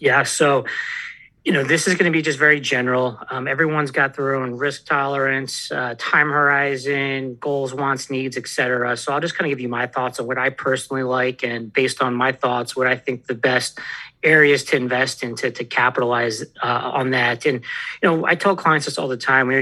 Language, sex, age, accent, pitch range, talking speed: English, male, 40-59, American, 130-150 Hz, 225 wpm